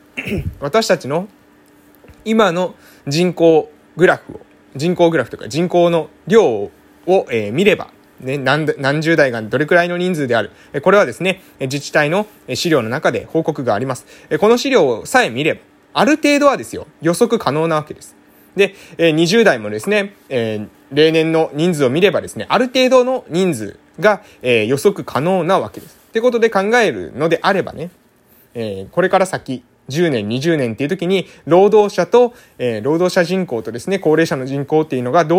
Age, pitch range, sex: 20-39, 150-215 Hz, male